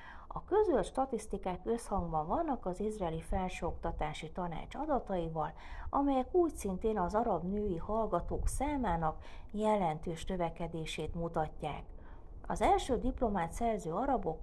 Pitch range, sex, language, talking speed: 170-230 Hz, female, Hungarian, 110 wpm